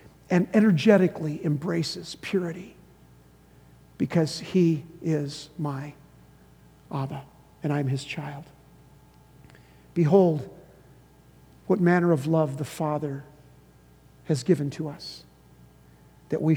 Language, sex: English, male